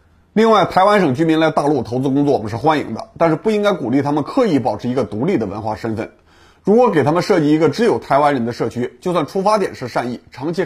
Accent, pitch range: Polish, 125-175 Hz